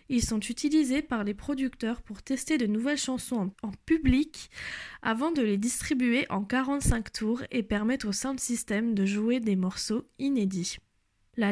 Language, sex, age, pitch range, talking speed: French, female, 10-29, 225-275 Hz, 160 wpm